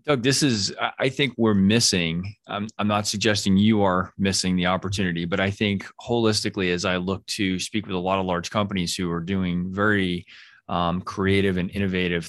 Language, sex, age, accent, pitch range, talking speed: English, male, 20-39, American, 90-105 Hz, 190 wpm